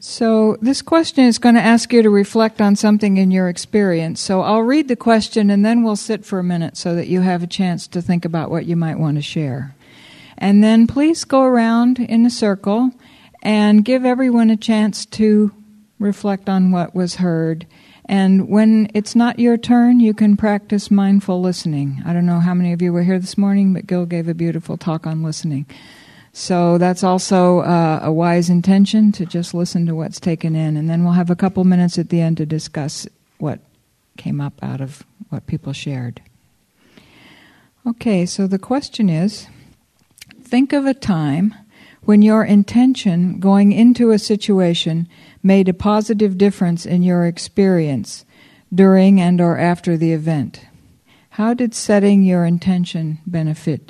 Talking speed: 180 wpm